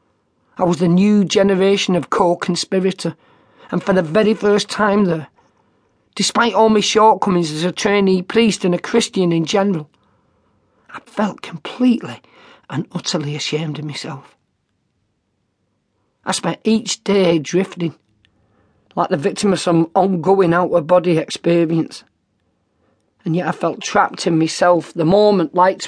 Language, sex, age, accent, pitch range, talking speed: English, male, 40-59, British, 170-210 Hz, 135 wpm